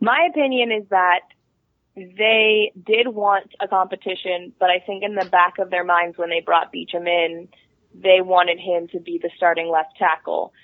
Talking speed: 180 wpm